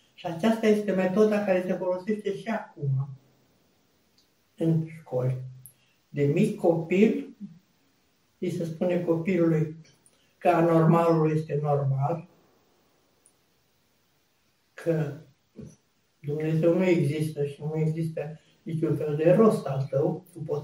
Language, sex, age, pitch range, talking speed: Romanian, male, 60-79, 145-185 Hz, 110 wpm